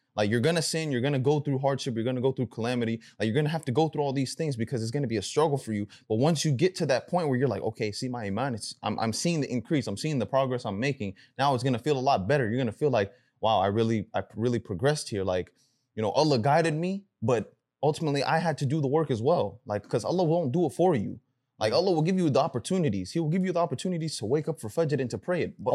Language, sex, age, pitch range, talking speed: English, male, 20-39, 120-160 Hz, 305 wpm